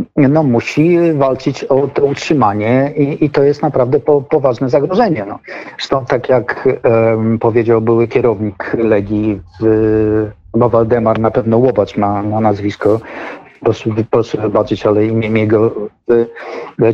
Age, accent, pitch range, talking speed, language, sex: 50-69, native, 115-160 Hz, 140 wpm, Polish, male